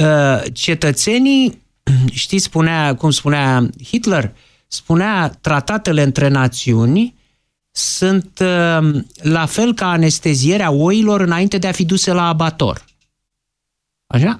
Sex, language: male, Romanian